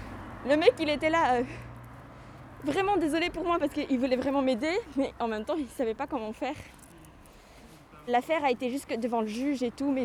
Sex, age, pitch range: female, 20-39, 225-285 Hz